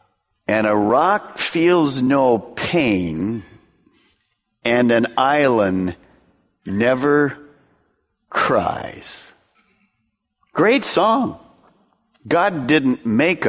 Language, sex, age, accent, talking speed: English, male, 50-69, American, 70 wpm